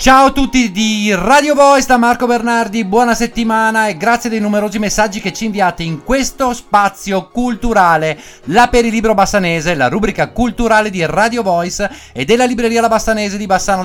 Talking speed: 170 wpm